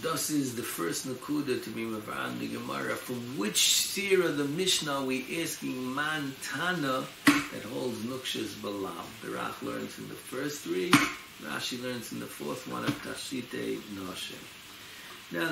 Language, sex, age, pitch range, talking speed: English, male, 60-79, 110-145 Hz, 155 wpm